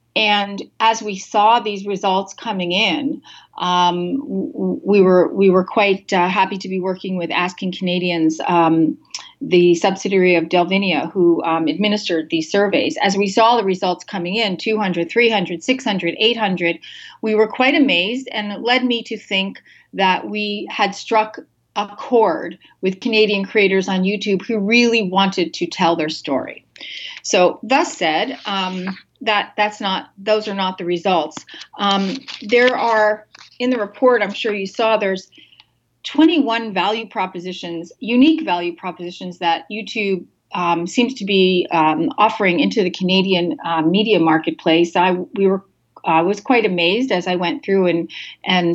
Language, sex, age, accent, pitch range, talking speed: English, female, 40-59, American, 175-215 Hz, 155 wpm